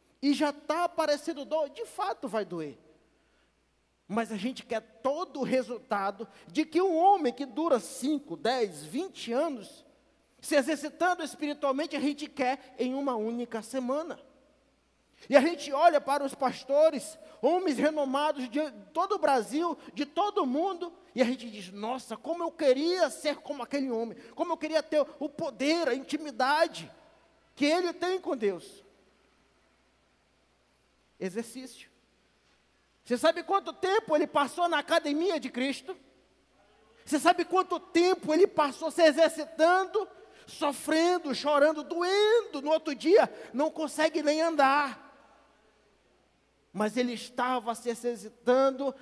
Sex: male